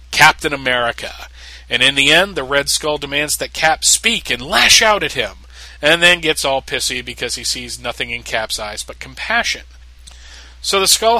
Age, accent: 40-59, American